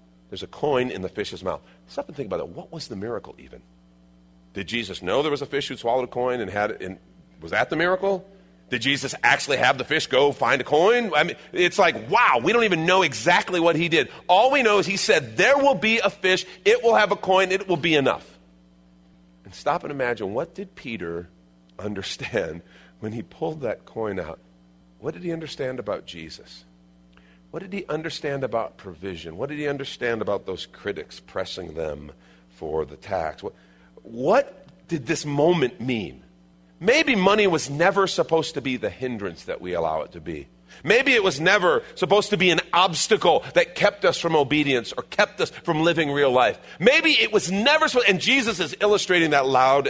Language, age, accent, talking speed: English, 40-59, American, 205 wpm